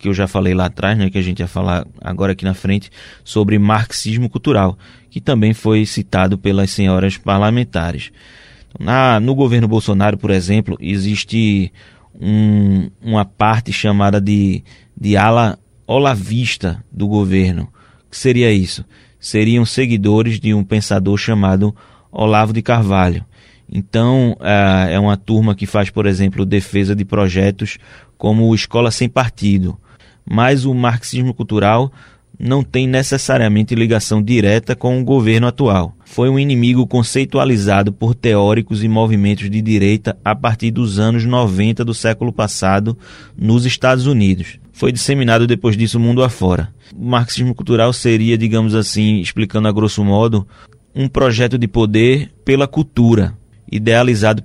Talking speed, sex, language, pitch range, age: 140 wpm, male, Portuguese, 100-120 Hz, 20-39